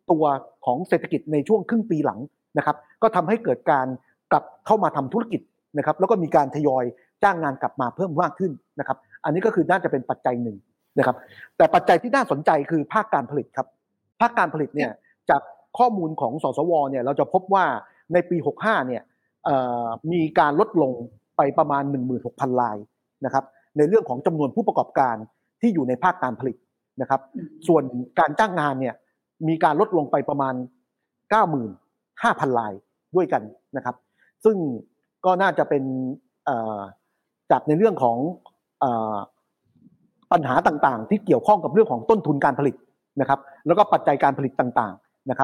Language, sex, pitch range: Thai, male, 130-185 Hz